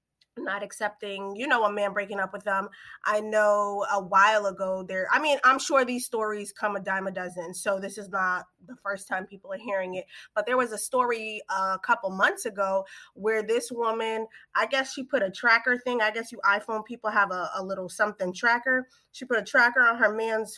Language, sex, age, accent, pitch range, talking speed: English, female, 20-39, American, 205-245 Hz, 220 wpm